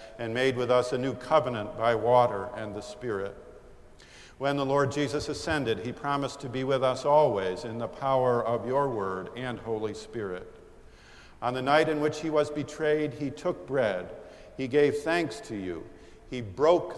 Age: 50-69